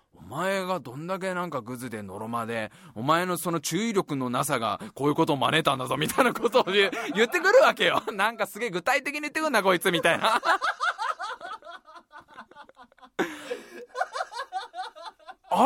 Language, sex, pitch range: Japanese, male, 170-270 Hz